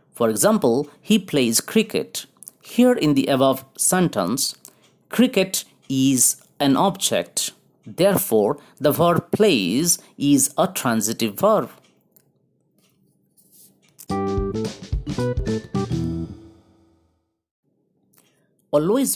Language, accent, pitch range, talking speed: English, Indian, 130-210 Hz, 70 wpm